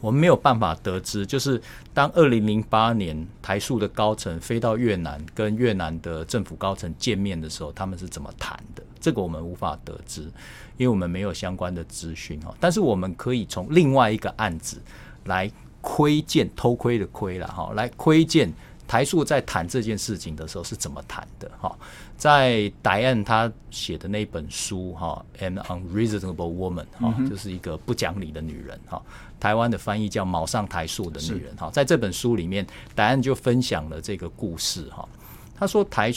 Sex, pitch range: male, 85-115 Hz